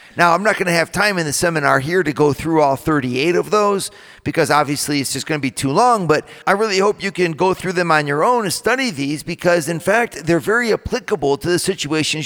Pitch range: 150-205 Hz